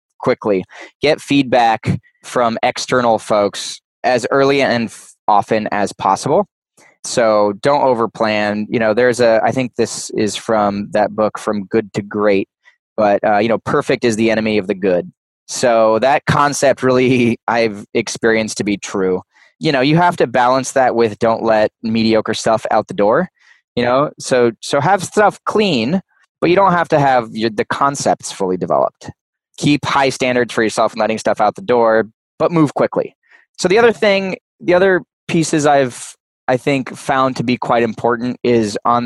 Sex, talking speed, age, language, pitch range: male, 175 wpm, 20-39, English, 110-140 Hz